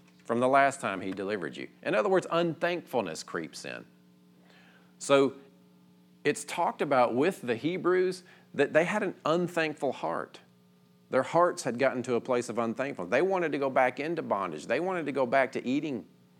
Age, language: 40-59, English